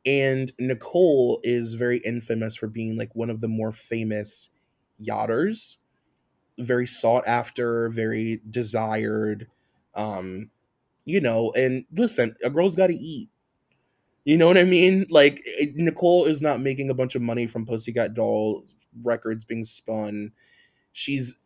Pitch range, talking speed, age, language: 110-135 Hz, 145 wpm, 20-39, English